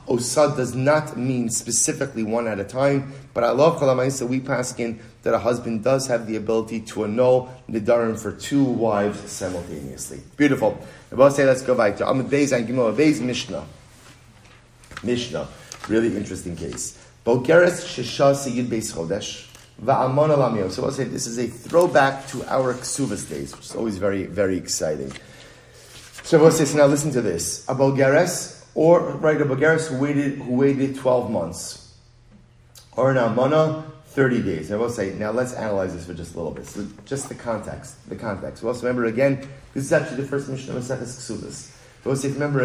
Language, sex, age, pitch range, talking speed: English, male, 30-49, 110-140 Hz, 170 wpm